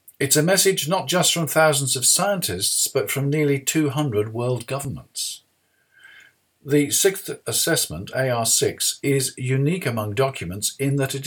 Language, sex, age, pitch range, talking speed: English, male, 50-69, 105-150 Hz, 140 wpm